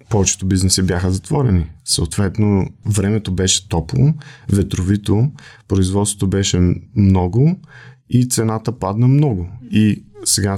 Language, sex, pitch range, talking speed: Bulgarian, male, 95-115 Hz, 100 wpm